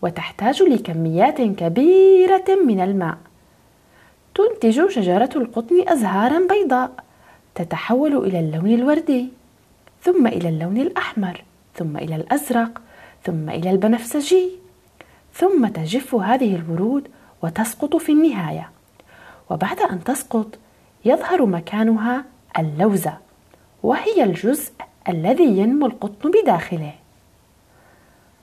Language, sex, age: Arabic, female, 30-49